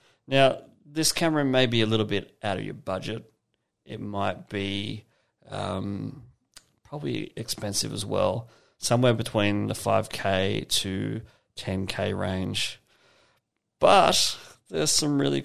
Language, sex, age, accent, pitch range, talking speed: English, male, 30-49, Australian, 105-130 Hz, 120 wpm